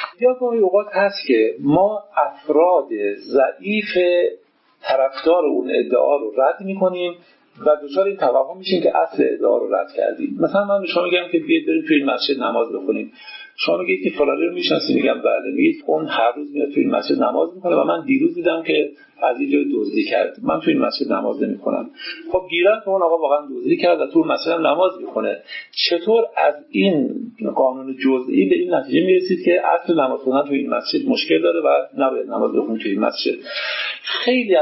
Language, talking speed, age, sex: Persian, 185 wpm, 50-69, male